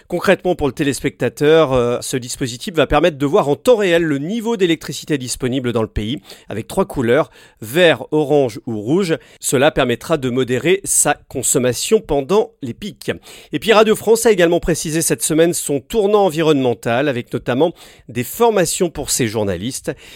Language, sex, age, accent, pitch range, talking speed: French, male, 40-59, French, 130-185 Hz, 165 wpm